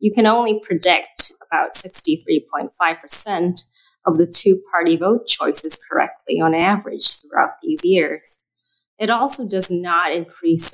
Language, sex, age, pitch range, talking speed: English, female, 20-39, 165-200 Hz, 125 wpm